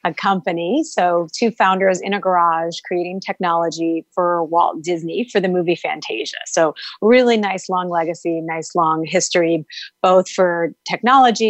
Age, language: 30-49, English